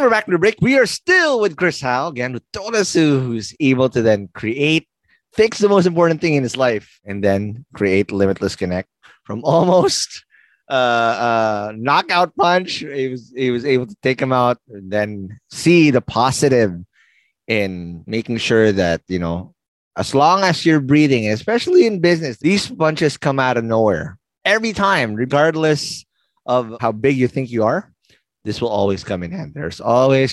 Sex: male